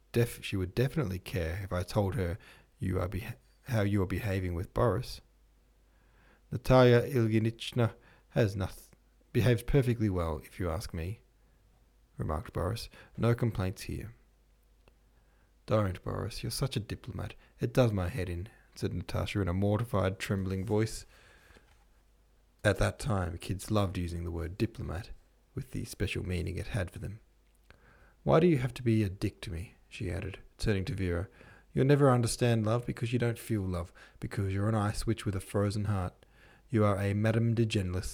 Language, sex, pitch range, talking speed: English, male, 95-120 Hz, 170 wpm